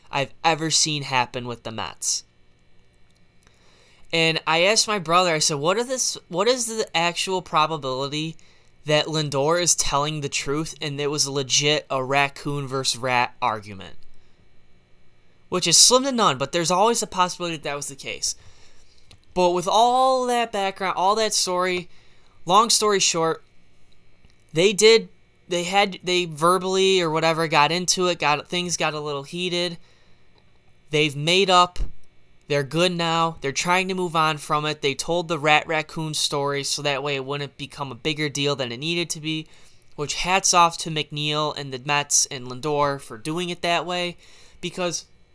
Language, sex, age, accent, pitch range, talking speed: English, male, 10-29, American, 130-180 Hz, 170 wpm